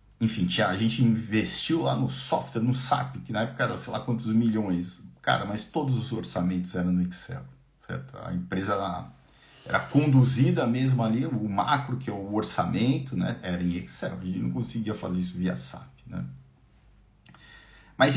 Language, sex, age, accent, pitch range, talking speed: Portuguese, male, 50-69, Brazilian, 90-135 Hz, 170 wpm